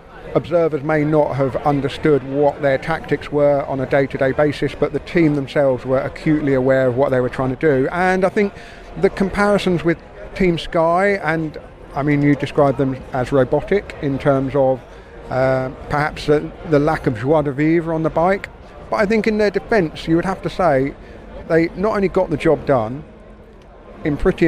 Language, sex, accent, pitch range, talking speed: English, male, British, 135-165 Hz, 190 wpm